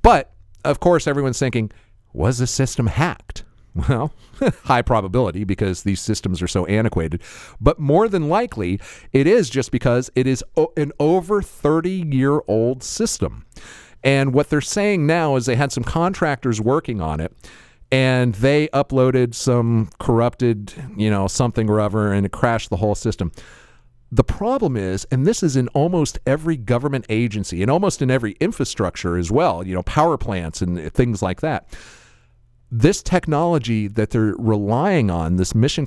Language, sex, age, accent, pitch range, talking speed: English, male, 50-69, American, 105-150 Hz, 160 wpm